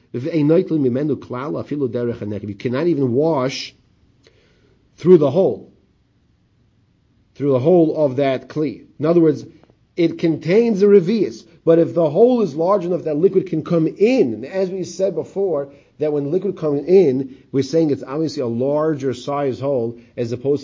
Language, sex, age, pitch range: English, male, 40-59, 120-155 Hz